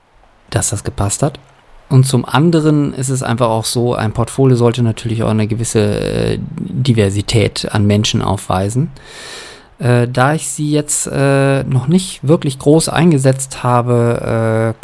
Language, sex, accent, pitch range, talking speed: German, male, German, 115-140 Hz, 150 wpm